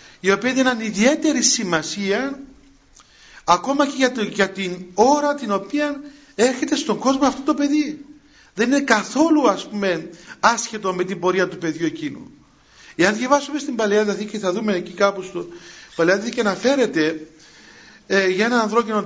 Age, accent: 50-69, native